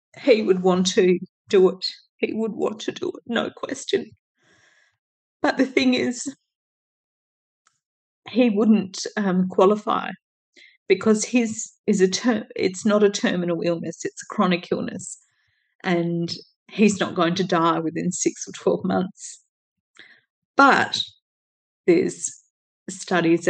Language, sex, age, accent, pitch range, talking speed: English, female, 30-49, Australian, 180-225 Hz, 130 wpm